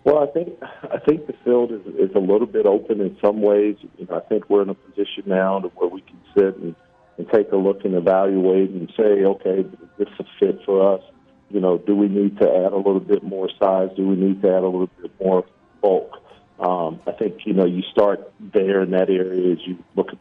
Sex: male